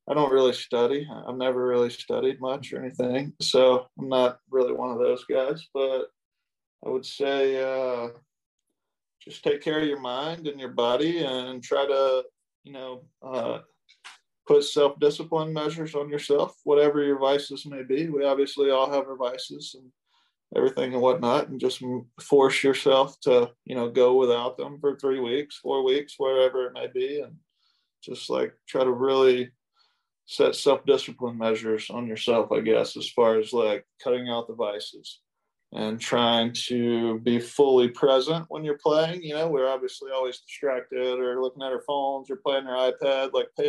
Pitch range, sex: 130-155 Hz, male